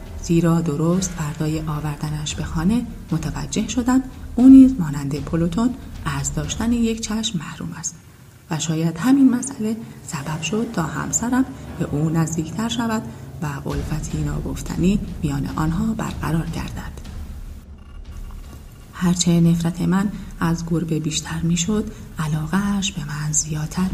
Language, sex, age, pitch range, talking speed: Persian, female, 30-49, 155-205 Hz, 120 wpm